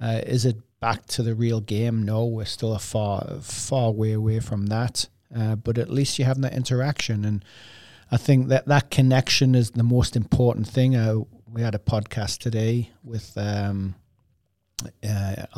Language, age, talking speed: English, 40-59, 175 wpm